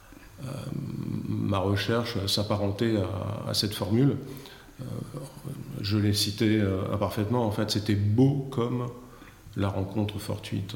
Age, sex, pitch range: 50-69, male, 105-120 Hz